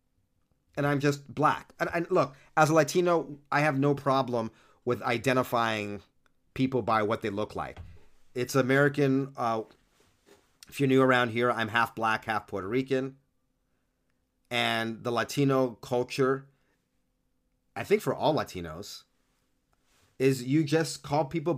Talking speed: 140 wpm